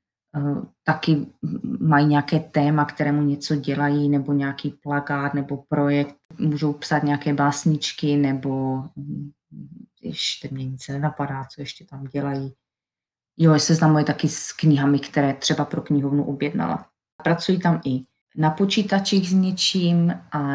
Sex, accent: female, native